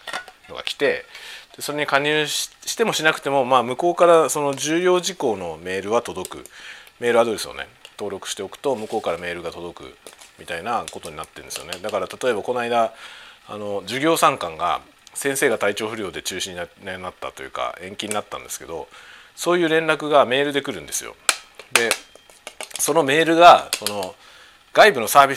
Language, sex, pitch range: Japanese, male, 125-200 Hz